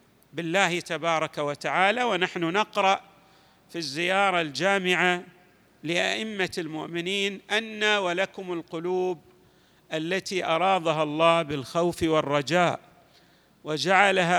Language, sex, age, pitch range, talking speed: Arabic, male, 50-69, 165-205 Hz, 80 wpm